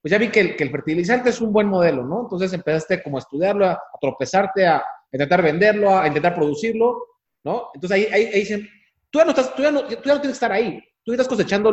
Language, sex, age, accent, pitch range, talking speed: Spanish, male, 30-49, Mexican, 155-215 Hz, 260 wpm